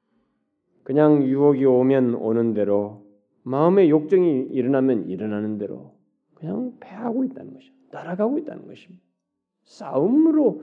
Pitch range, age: 115-180 Hz, 40-59